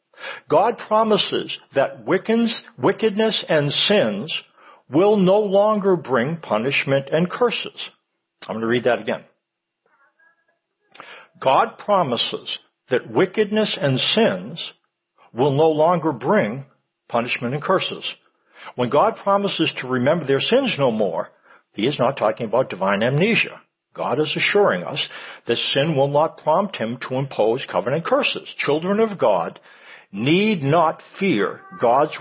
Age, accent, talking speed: 60-79, American, 130 wpm